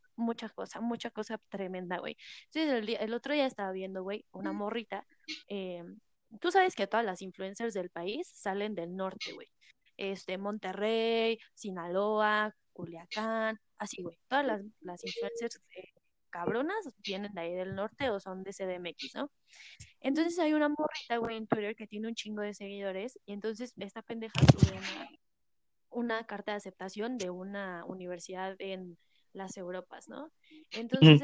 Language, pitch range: Spanish, 190-240 Hz